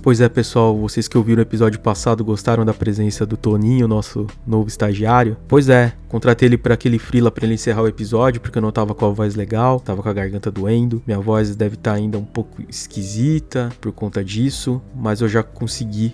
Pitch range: 110-130 Hz